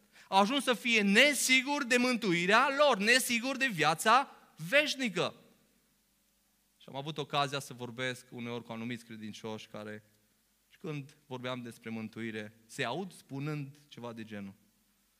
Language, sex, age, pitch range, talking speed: Romanian, male, 20-39, 150-245 Hz, 135 wpm